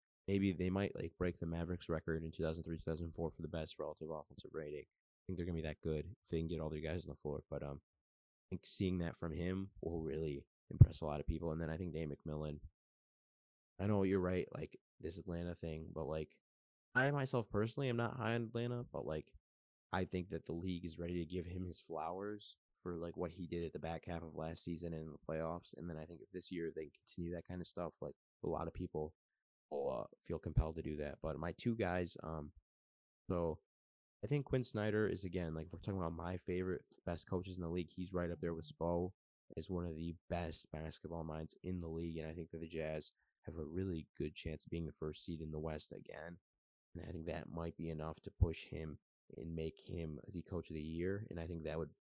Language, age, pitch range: English, 20-39, 80-90 Hz